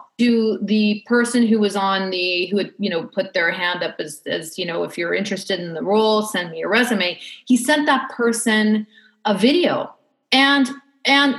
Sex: female